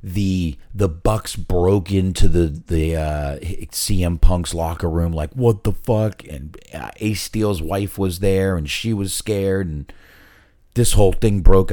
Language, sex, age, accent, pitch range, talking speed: English, male, 40-59, American, 80-105 Hz, 165 wpm